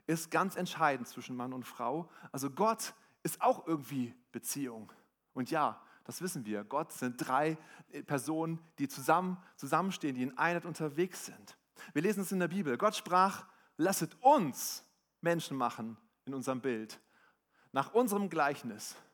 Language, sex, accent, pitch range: German, male, German, 130-185 Hz